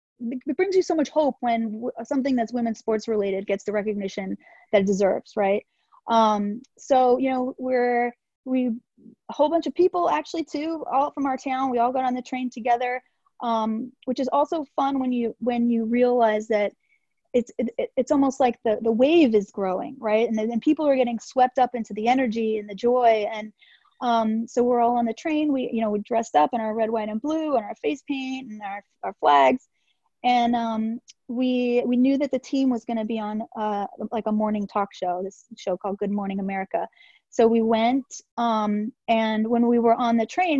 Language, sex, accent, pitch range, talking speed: English, female, American, 215-260 Hz, 210 wpm